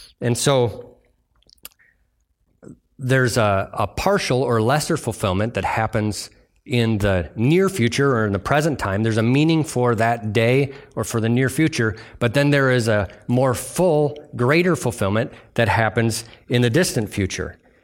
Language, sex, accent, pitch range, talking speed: English, male, American, 110-145 Hz, 155 wpm